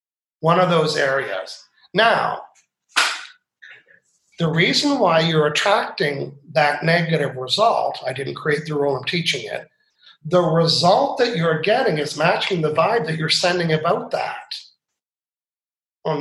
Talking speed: 135 wpm